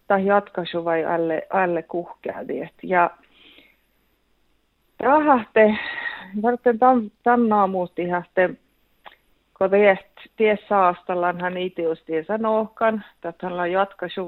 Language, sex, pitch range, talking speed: Finnish, female, 165-210 Hz, 80 wpm